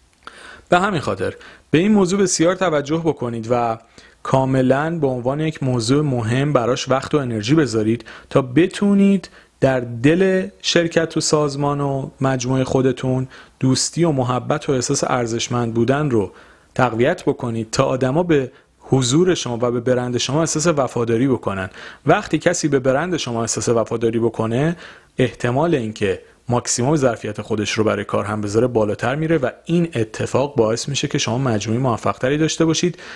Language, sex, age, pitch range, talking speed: Persian, male, 40-59, 115-155 Hz, 150 wpm